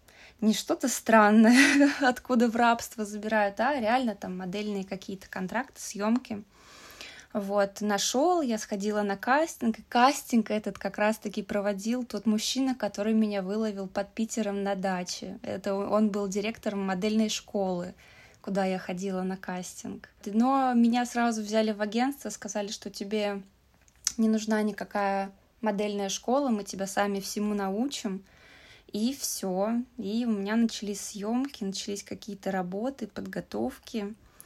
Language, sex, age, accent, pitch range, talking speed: Russian, female, 20-39, native, 200-230 Hz, 135 wpm